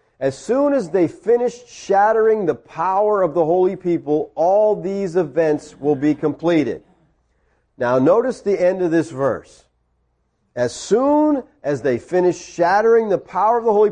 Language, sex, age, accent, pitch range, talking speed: English, male, 40-59, American, 155-245 Hz, 155 wpm